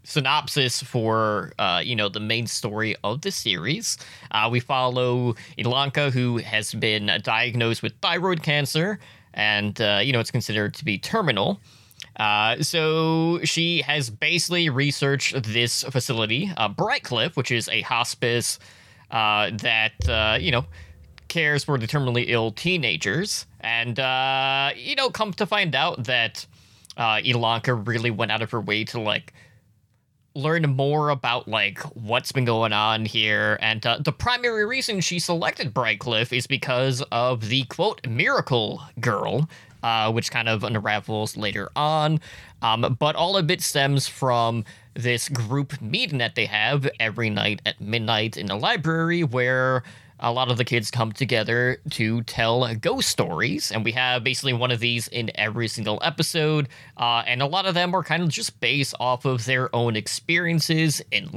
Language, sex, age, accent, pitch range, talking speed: English, male, 20-39, American, 110-145 Hz, 160 wpm